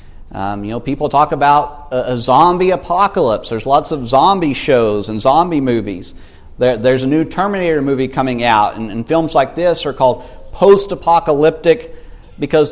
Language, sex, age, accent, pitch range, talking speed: English, male, 50-69, American, 120-160 Hz, 160 wpm